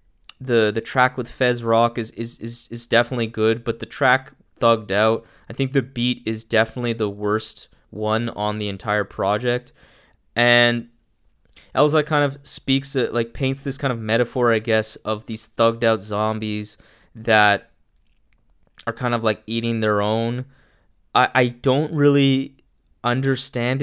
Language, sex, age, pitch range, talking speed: English, male, 20-39, 110-130 Hz, 155 wpm